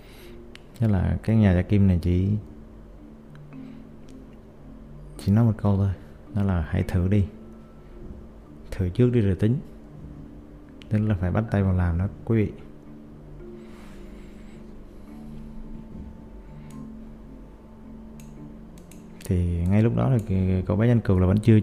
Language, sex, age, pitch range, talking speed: Vietnamese, male, 20-39, 75-105 Hz, 125 wpm